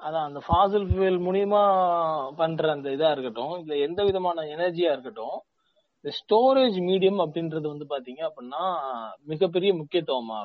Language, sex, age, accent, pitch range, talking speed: Tamil, male, 30-49, native, 155-205 Hz, 130 wpm